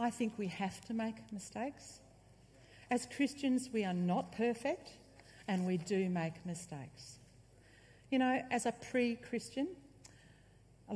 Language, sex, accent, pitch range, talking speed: English, female, Australian, 135-205 Hz, 130 wpm